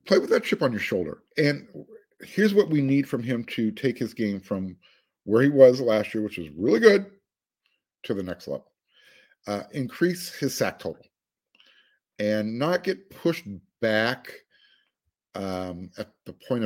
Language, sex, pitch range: English, male, 105-155 Hz